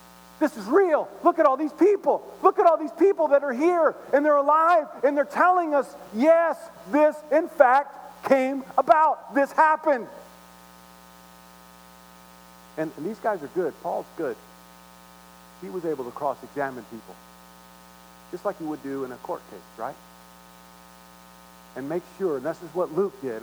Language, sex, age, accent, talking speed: English, male, 50-69, American, 165 wpm